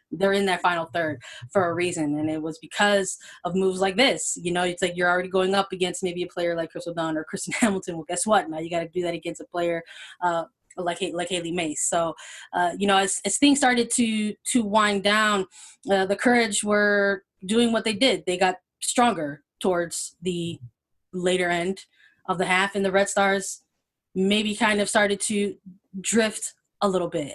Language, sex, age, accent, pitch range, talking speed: English, female, 20-39, American, 180-215 Hz, 205 wpm